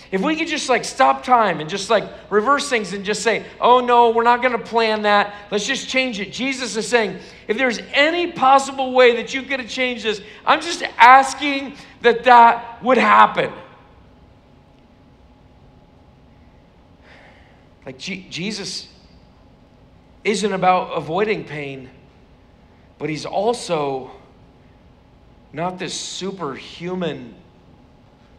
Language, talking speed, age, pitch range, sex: English, 125 wpm, 50-69, 150-235 Hz, male